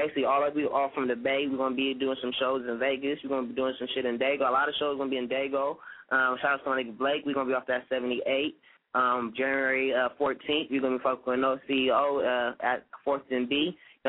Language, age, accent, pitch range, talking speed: English, 10-29, American, 130-155 Hz, 290 wpm